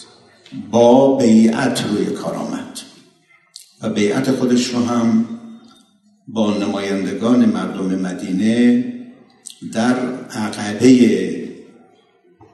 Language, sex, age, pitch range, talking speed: Persian, male, 60-79, 95-140 Hz, 75 wpm